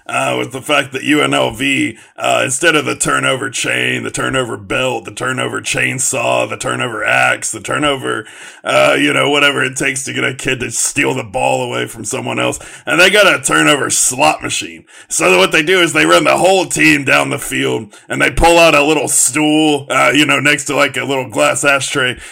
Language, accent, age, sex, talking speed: English, American, 40-59, male, 210 wpm